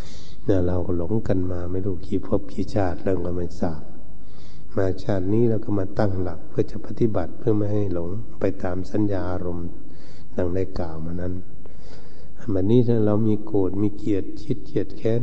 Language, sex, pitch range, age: Thai, male, 90-110 Hz, 60-79